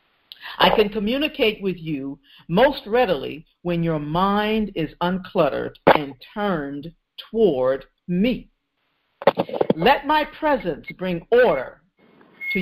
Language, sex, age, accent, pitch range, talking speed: English, female, 50-69, American, 180-275 Hz, 105 wpm